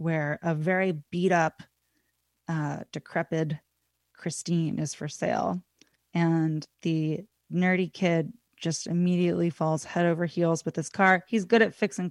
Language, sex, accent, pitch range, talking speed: English, female, American, 165-195 Hz, 130 wpm